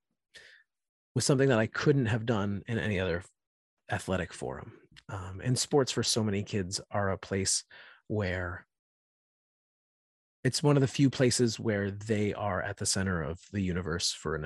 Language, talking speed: English, 165 wpm